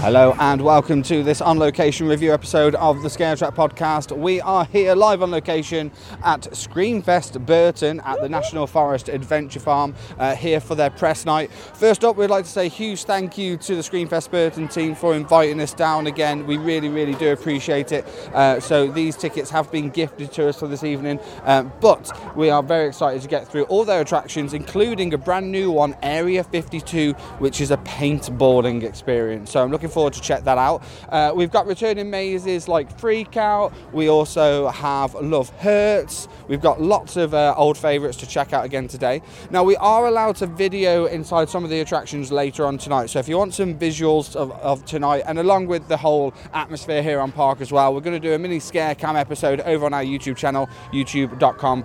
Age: 20-39